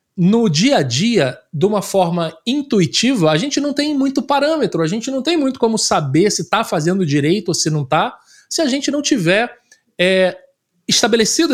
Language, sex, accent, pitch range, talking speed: Portuguese, male, Brazilian, 160-230 Hz, 180 wpm